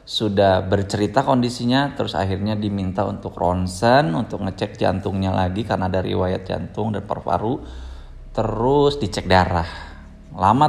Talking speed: 125 wpm